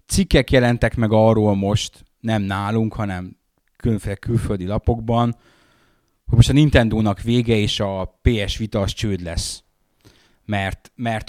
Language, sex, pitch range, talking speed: Hungarian, male, 100-120 Hz, 135 wpm